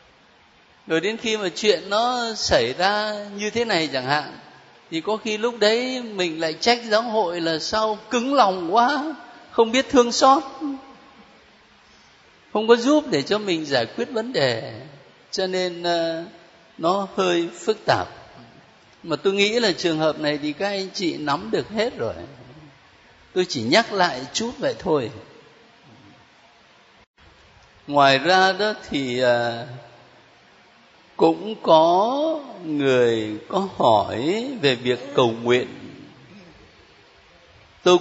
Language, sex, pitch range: Vietnamese, male, 140-220 Hz